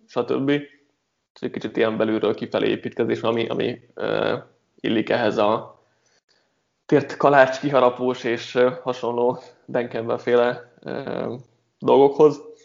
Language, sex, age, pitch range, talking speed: Hungarian, male, 20-39, 120-135 Hz, 115 wpm